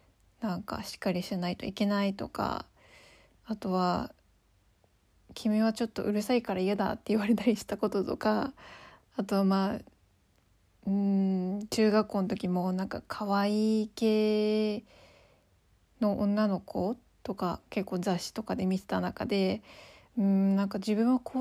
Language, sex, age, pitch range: Japanese, female, 20-39, 175-220 Hz